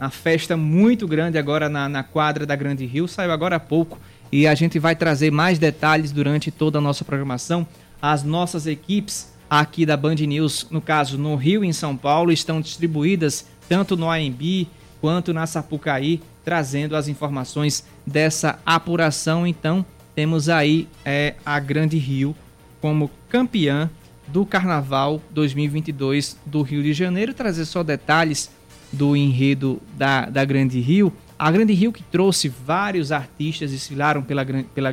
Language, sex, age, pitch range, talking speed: Portuguese, male, 20-39, 145-175 Hz, 150 wpm